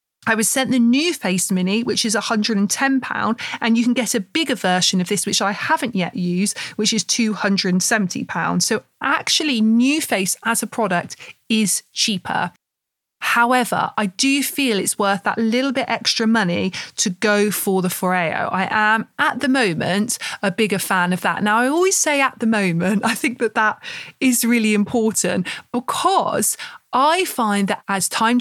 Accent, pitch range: British, 195-250 Hz